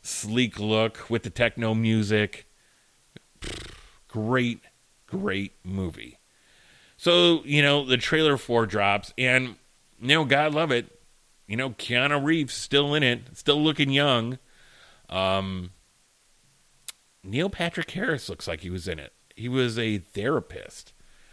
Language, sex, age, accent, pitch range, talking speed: English, male, 30-49, American, 110-145 Hz, 130 wpm